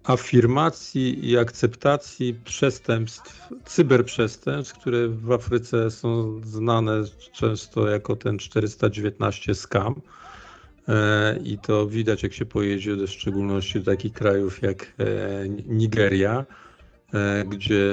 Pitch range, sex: 100-125 Hz, male